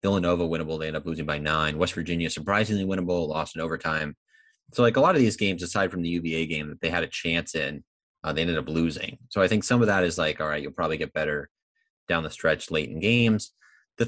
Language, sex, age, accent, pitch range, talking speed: English, male, 20-39, American, 75-100 Hz, 250 wpm